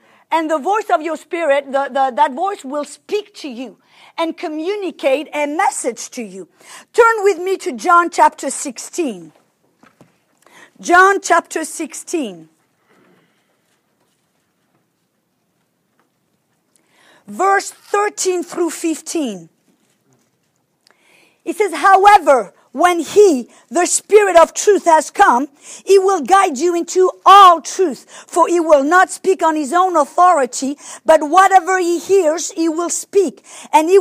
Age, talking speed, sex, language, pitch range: 50-69, 125 wpm, female, English, 290-365 Hz